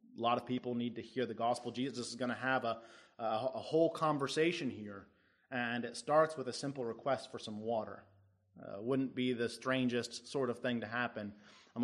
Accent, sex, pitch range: American, male, 115-135 Hz